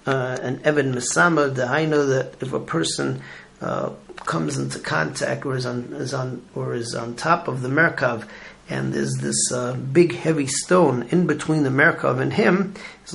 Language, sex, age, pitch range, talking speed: English, male, 40-59, 125-155 Hz, 190 wpm